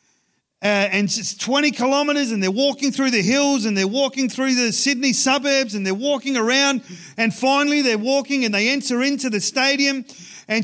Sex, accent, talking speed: male, Australian, 185 wpm